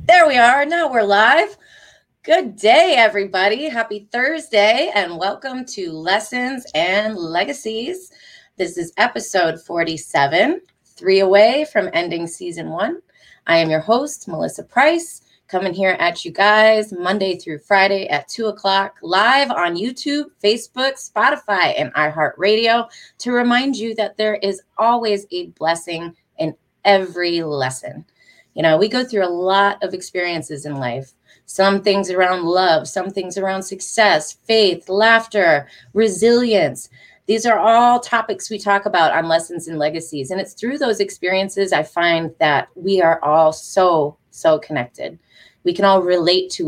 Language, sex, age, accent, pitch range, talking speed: English, female, 30-49, American, 170-225 Hz, 150 wpm